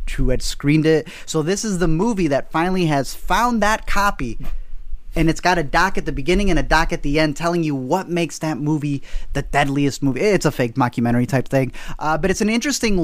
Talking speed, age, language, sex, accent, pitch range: 225 wpm, 20-39, English, male, American, 145-190 Hz